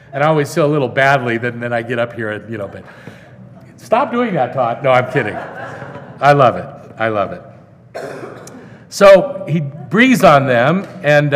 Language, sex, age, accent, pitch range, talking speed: English, male, 50-69, American, 135-180 Hz, 185 wpm